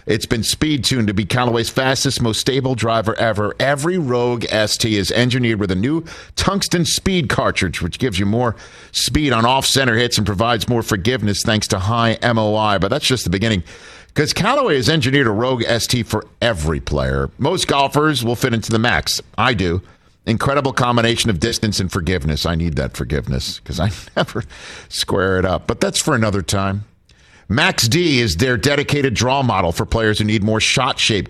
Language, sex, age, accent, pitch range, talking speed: English, male, 50-69, American, 95-125 Hz, 185 wpm